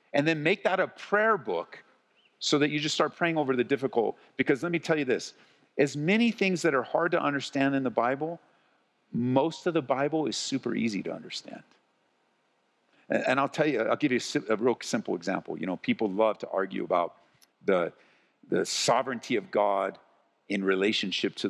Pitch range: 110-165 Hz